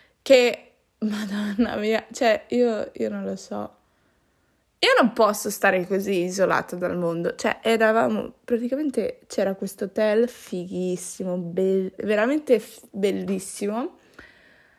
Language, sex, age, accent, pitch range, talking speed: Italian, female, 20-39, native, 185-240 Hz, 115 wpm